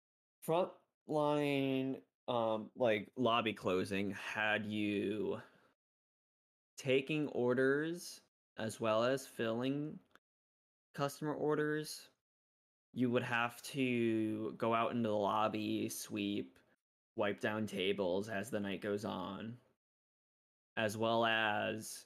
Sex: male